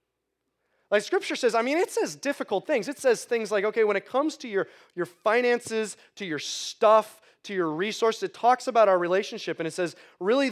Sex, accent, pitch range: male, American, 165-245 Hz